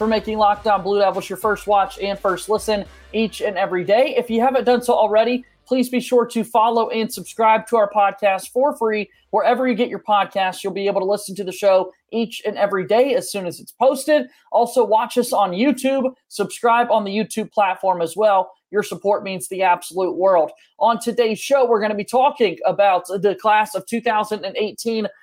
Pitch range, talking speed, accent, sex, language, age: 195-230 Hz, 205 wpm, American, male, English, 30-49